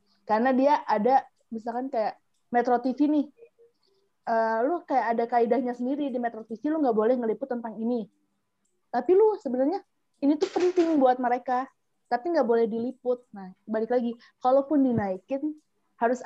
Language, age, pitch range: Indonesian, 20-39, 215-260 Hz